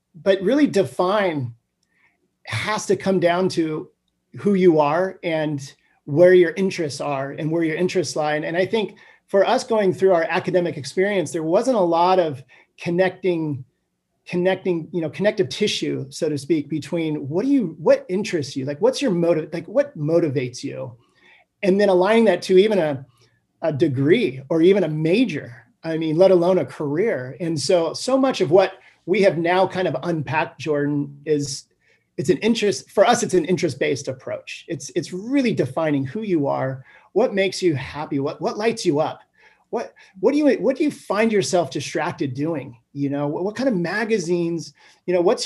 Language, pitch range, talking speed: English, 150-195 Hz, 185 wpm